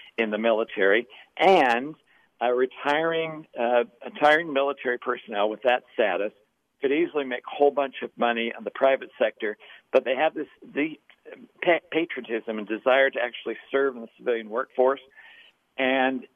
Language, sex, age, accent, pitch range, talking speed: English, male, 60-79, American, 120-145 Hz, 150 wpm